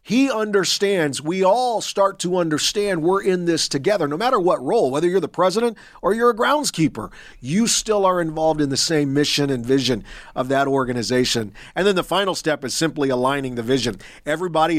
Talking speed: 190 wpm